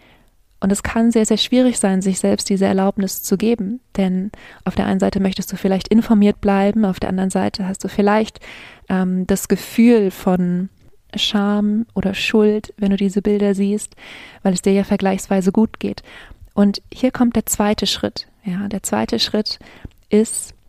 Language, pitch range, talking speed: German, 190-210 Hz, 175 wpm